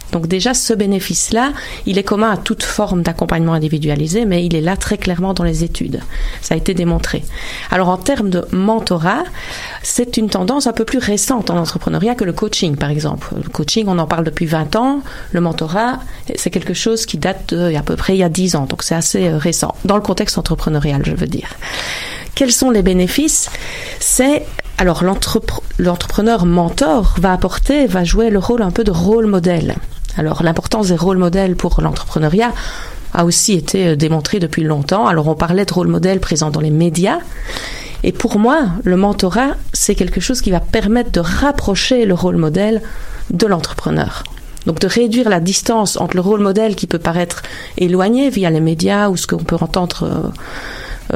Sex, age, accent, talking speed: female, 40-59, French, 190 wpm